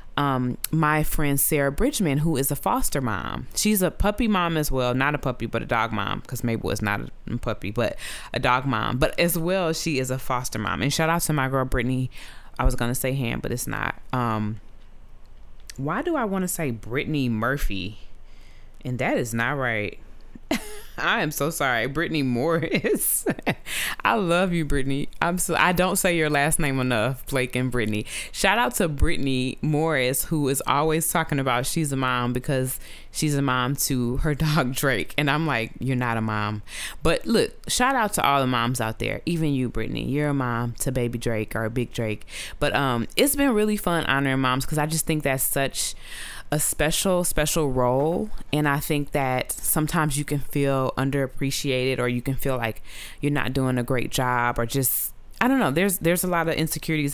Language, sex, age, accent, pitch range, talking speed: English, female, 20-39, American, 120-155 Hz, 200 wpm